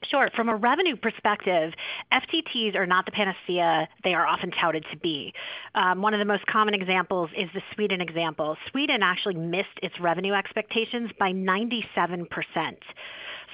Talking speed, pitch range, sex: 155 wpm, 175-225 Hz, female